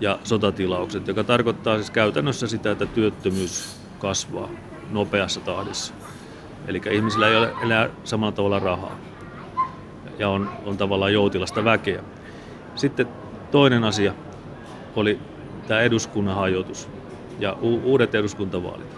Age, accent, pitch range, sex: 30-49, native, 100-115 Hz, male